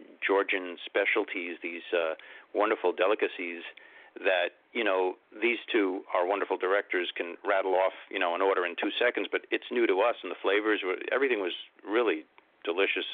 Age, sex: 50-69, male